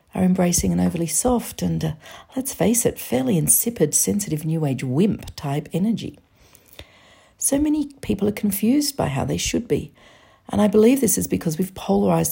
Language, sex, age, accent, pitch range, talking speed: English, female, 50-69, Australian, 140-220 Hz, 170 wpm